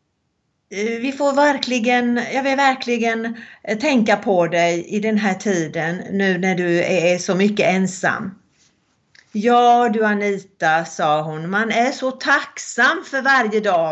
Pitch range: 185-245 Hz